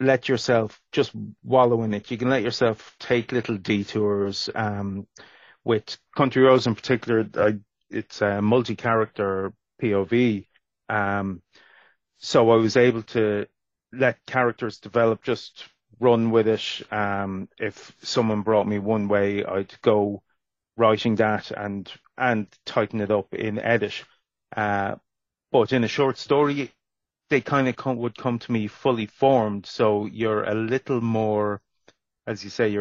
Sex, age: male, 30-49